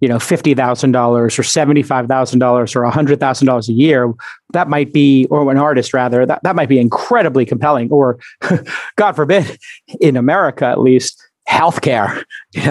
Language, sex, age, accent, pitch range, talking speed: English, male, 40-59, American, 125-150 Hz, 145 wpm